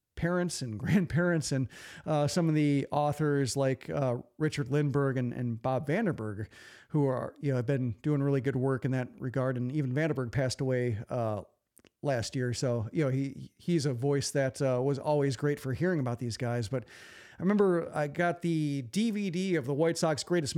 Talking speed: 195 wpm